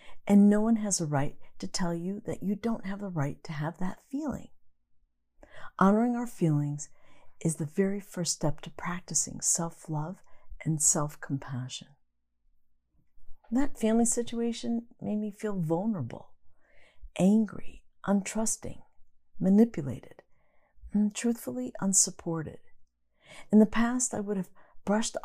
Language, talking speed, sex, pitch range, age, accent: English, 125 wpm, female, 145-205 Hz, 50-69, American